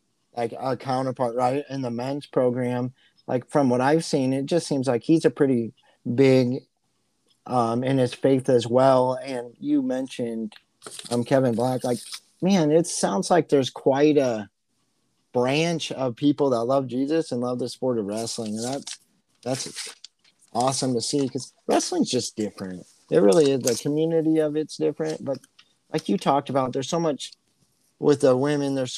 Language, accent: English, American